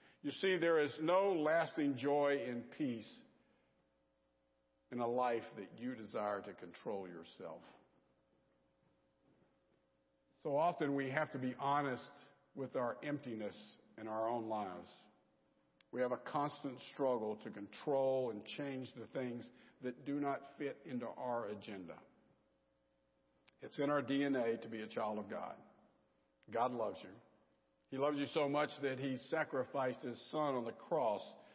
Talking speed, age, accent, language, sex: 145 wpm, 60-79, American, English, male